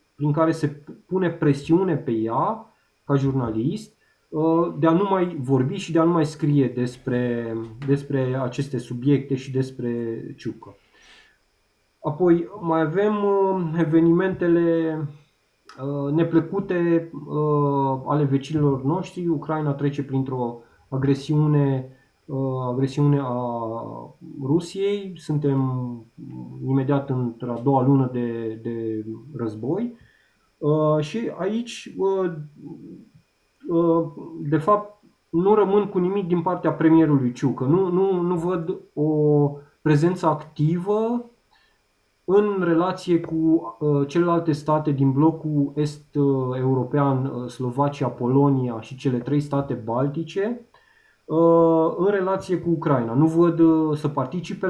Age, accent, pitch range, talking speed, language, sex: 20-39, native, 135-170 Hz, 100 wpm, Romanian, male